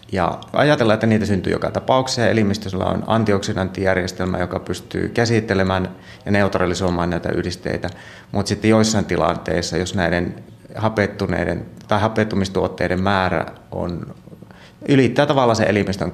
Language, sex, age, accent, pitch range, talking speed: Finnish, male, 30-49, native, 85-105 Hz, 125 wpm